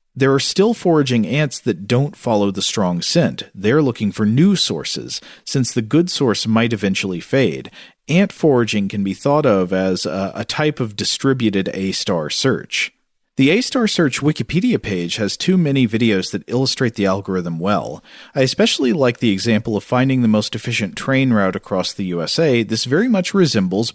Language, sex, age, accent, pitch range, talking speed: English, male, 40-59, American, 100-135 Hz, 175 wpm